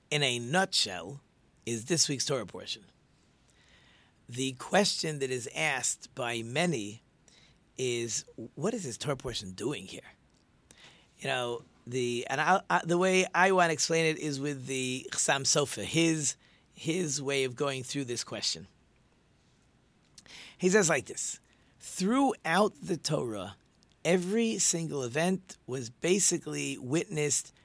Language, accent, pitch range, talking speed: English, American, 120-160 Hz, 135 wpm